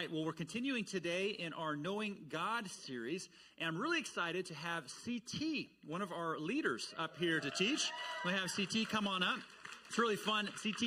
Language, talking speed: English, 190 wpm